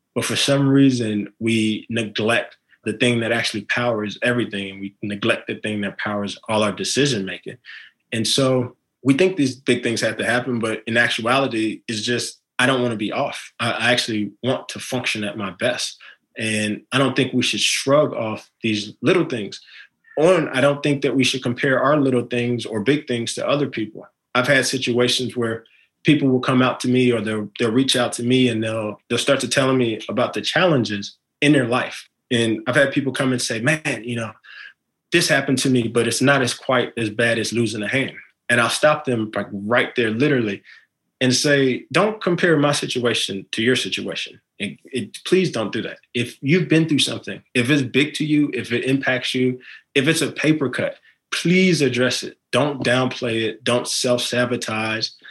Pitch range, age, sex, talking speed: 115-135 Hz, 20-39, male, 200 wpm